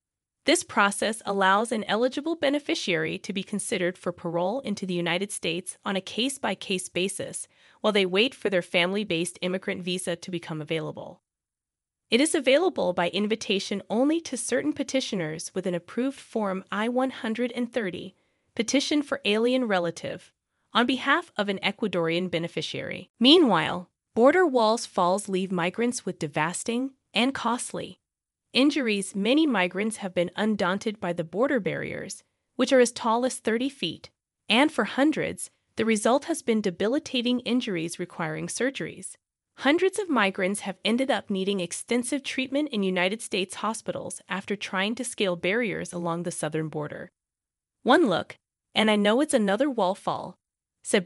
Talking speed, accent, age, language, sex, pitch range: 145 wpm, American, 20-39, English, female, 185-255 Hz